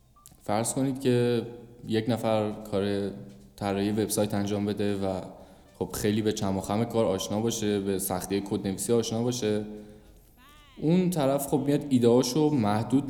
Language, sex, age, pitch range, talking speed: Persian, male, 10-29, 100-120 Hz, 135 wpm